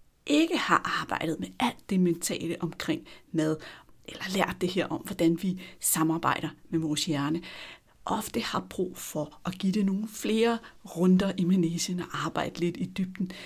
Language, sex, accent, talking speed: Danish, female, native, 165 wpm